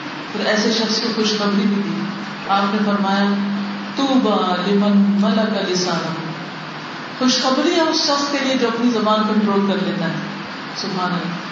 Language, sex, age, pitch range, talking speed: Urdu, female, 50-69, 200-250 Hz, 145 wpm